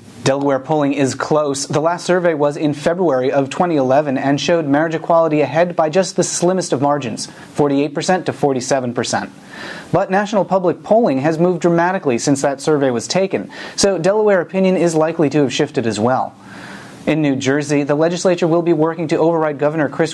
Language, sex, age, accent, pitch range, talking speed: English, male, 30-49, American, 140-170 Hz, 180 wpm